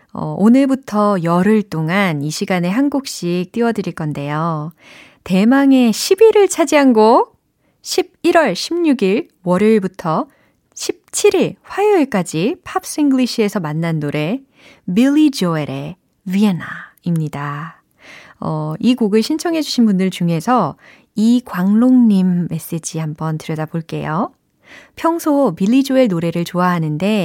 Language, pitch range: Korean, 165-240 Hz